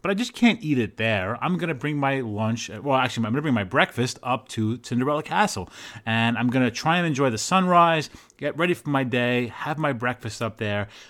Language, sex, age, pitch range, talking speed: English, male, 30-49, 110-145 Hz, 240 wpm